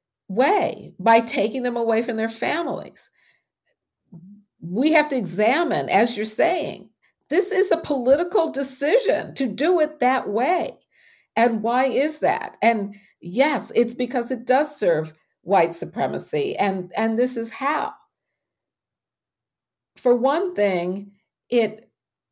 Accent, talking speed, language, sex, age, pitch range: American, 125 wpm, English, female, 50-69, 195-255 Hz